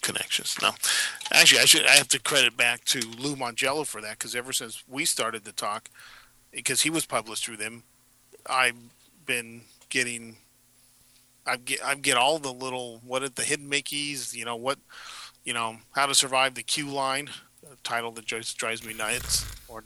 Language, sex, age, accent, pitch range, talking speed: English, male, 40-59, American, 120-145 Hz, 185 wpm